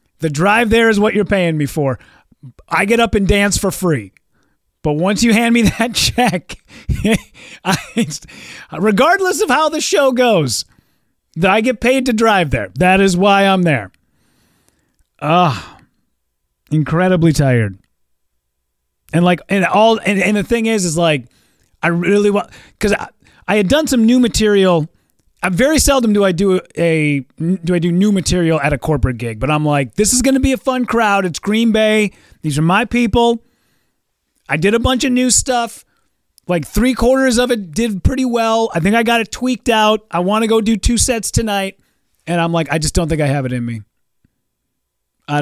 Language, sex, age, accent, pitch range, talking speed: English, male, 30-49, American, 150-235 Hz, 195 wpm